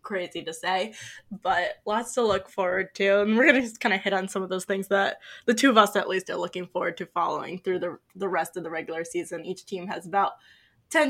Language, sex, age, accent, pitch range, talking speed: English, female, 10-29, American, 180-220 Hz, 255 wpm